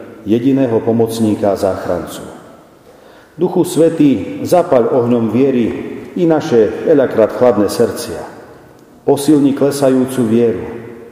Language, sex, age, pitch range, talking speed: Slovak, male, 40-59, 115-150 Hz, 85 wpm